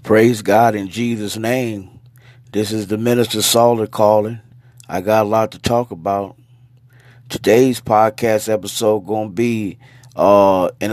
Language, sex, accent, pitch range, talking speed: English, male, American, 100-125 Hz, 145 wpm